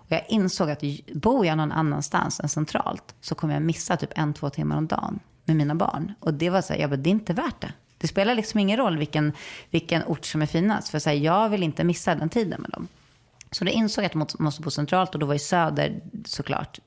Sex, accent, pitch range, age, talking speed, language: female, Swedish, 150-195 Hz, 30-49, 255 wpm, English